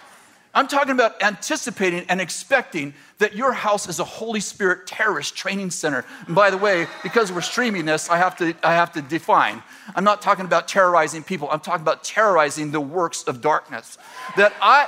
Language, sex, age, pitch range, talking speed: English, male, 50-69, 165-220 Hz, 190 wpm